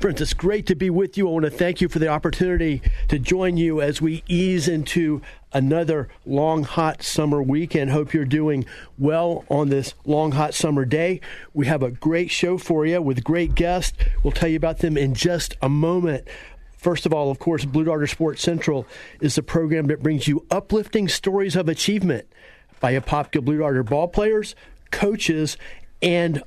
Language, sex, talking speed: English, male, 190 wpm